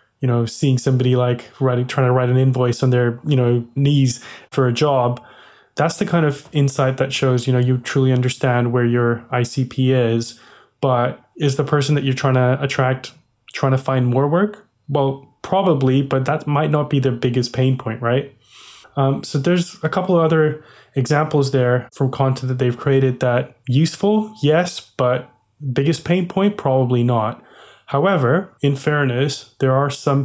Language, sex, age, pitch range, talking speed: English, male, 20-39, 125-145 Hz, 180 wpm